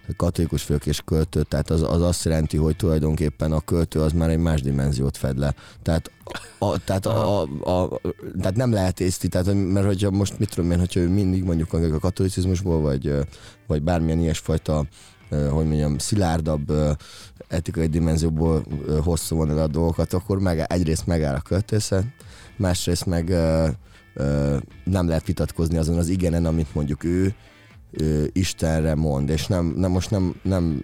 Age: 20-39